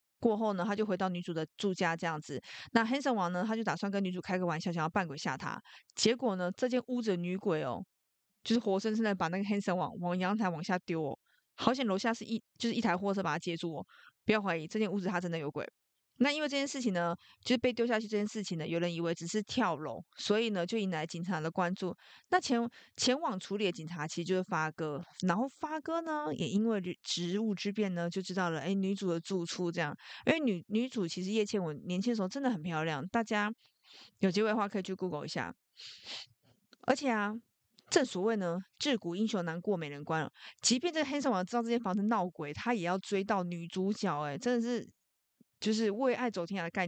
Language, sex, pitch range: Chinese, female, 175-230 Hz